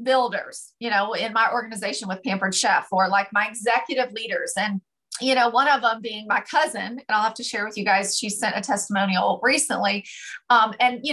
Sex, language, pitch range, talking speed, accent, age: female, English, 235-300 Hz, 210 wpm, American, 40-59